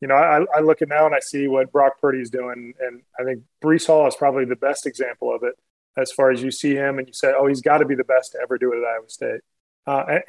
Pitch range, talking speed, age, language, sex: 135-160 Hz, 295 wpm, 20-39, English, male